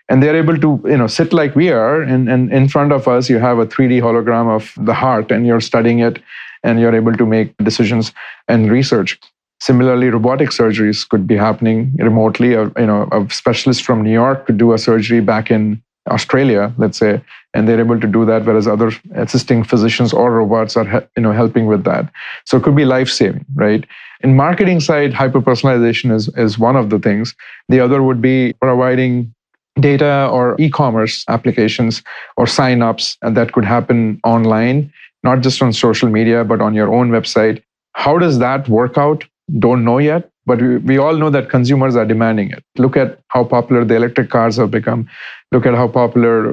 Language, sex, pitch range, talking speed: English, male, 115-130 Hz, 190 wpm